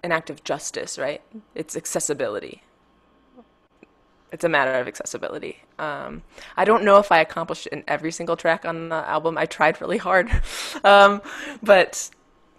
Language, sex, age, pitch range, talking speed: English, female, 20-39, 160-250 Hz, 155 wpm